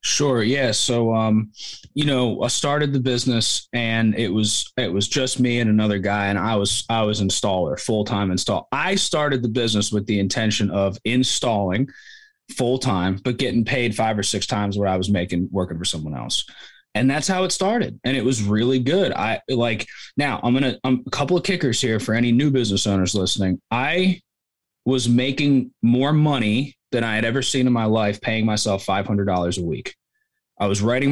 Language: English